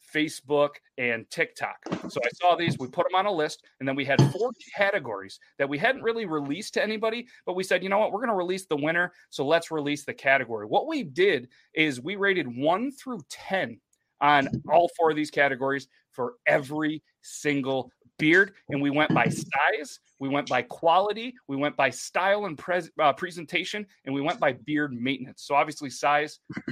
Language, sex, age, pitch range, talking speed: English, male, 30-49, 135-175 Hz, 195 wpm